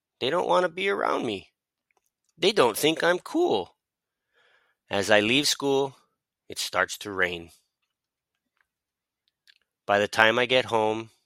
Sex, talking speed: male, 140 wpm